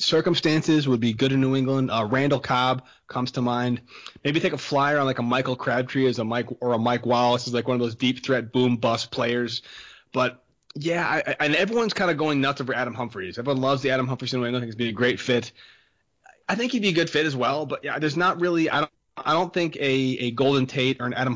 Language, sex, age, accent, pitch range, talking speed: English, male, 30-49, American, 120-140 Hz, 255 wpm